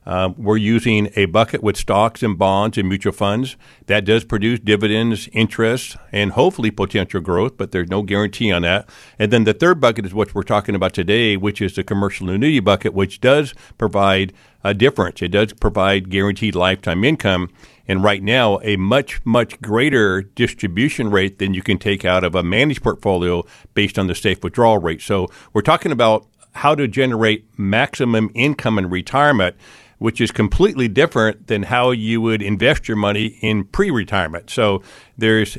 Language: English